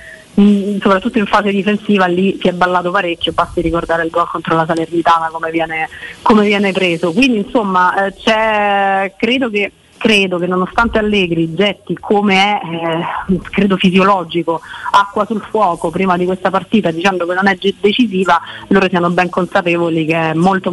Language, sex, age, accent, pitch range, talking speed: Italian, female, 30-49, native, 175-215 Hz, 160 wpm